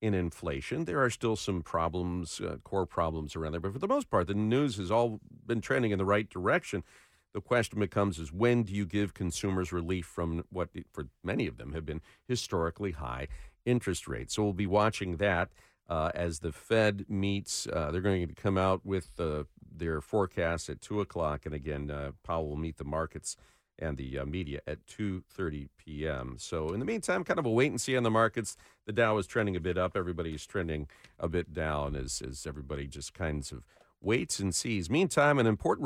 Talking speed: 205 wpm